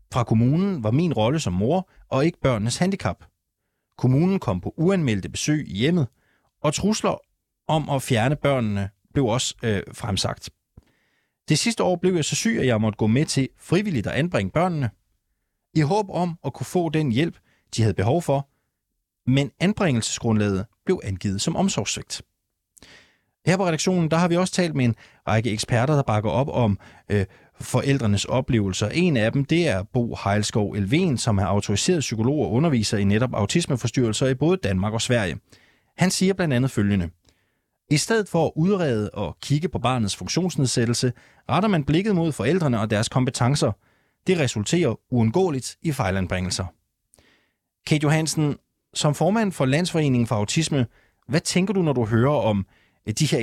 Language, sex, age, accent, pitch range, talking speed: Danish, male, 30-49, native, 110-160 Hz, 165 wpm